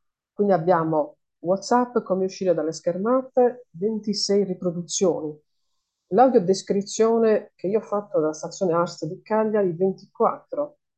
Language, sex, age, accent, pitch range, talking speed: Italian, female, 50-69, native, 170-220 Hz, 115 wpm